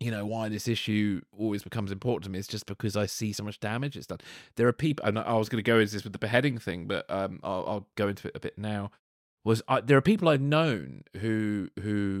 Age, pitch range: 30-49, 105-135 Hz